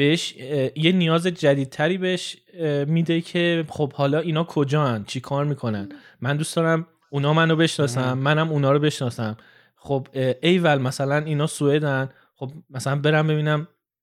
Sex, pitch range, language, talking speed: male, 125-160 Hz, Persian, 150 wpm